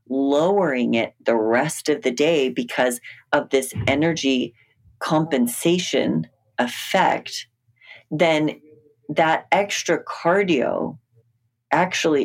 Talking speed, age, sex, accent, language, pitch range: 90 wpm, 30-49, female, American, English, 120-165 Hz